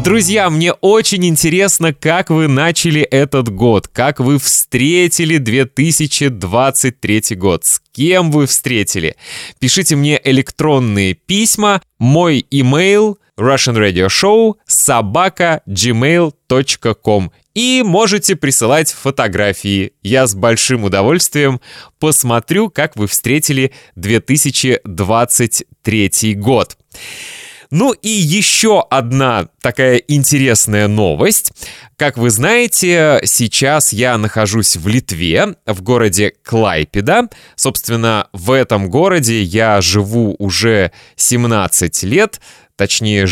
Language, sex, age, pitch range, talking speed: Russian, male, 20-39, 110-160 Hz, 100 wpm